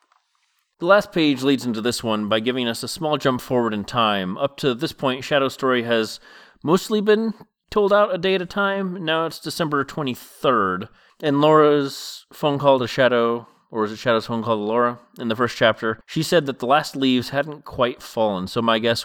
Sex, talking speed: male, 210 wpm